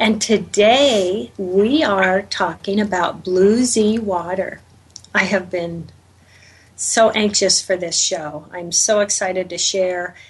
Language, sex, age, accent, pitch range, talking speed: English, female, 40-59, American, 185-220 Hz, 130 wpm